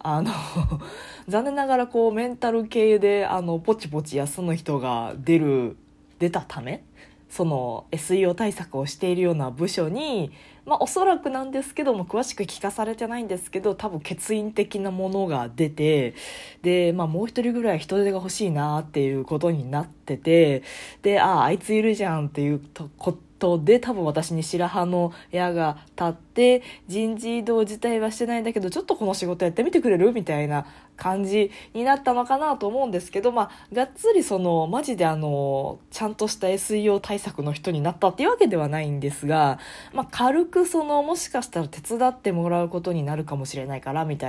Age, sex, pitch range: 20-39, female, 155-220 Hz